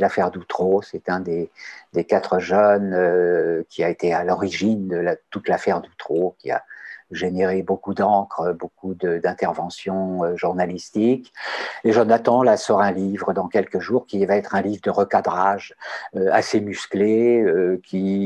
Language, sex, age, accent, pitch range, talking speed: French, male, 50-69, French, 90-110 Hz, 150 wpm